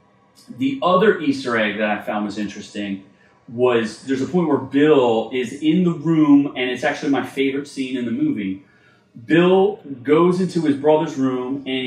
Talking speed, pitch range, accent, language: 175 wpm, 120-145 Hz, American, English